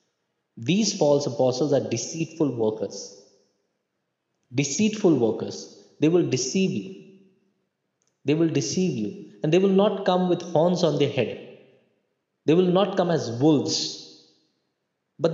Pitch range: 130-180 Hz